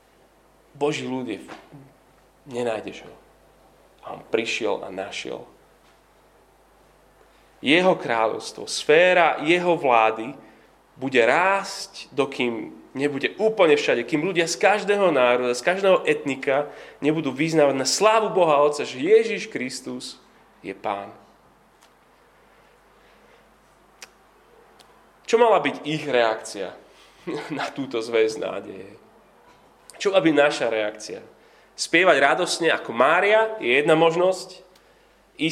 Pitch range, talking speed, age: 145-195 Hz, 100 wpm, 30-49